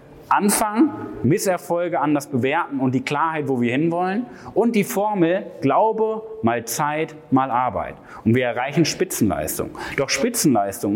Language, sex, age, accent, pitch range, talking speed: German, male, 30-49, German, 125-170 Hz, 135 wpm